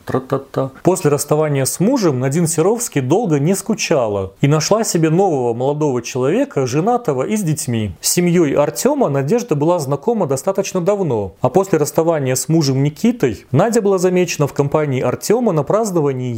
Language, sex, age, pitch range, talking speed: Russian, male, 30-49, 130-175 Hz, 150 wpm